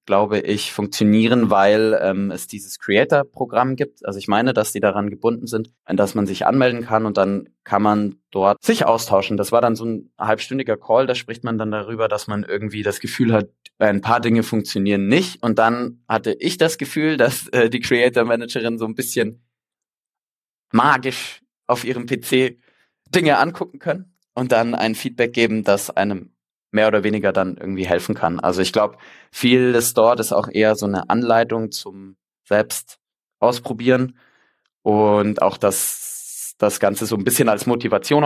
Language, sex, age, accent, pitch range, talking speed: German, male, 20-39, German, 105-120 Hz, 175 wpm